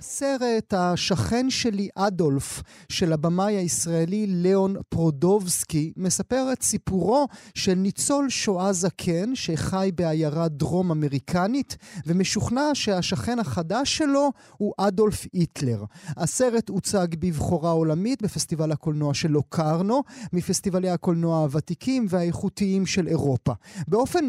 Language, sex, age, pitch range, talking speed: Hebrew, male, 30-49, 170-230 Hz, 105 wpm